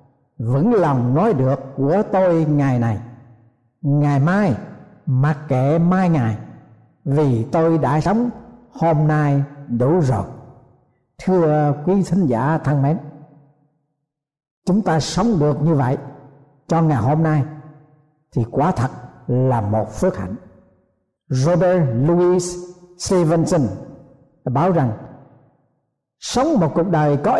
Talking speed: 120 wpm